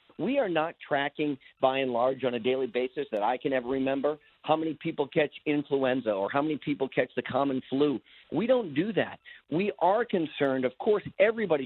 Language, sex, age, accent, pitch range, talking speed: English, male, 50-69, American, 145-195 Hz, 200 wpm